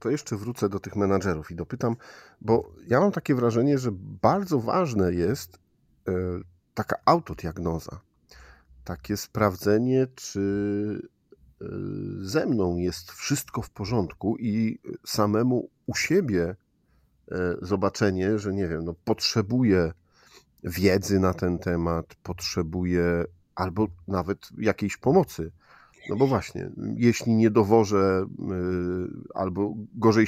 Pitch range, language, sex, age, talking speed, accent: 90-110 Hz, Polish, male, 50-69, 110 wpm, native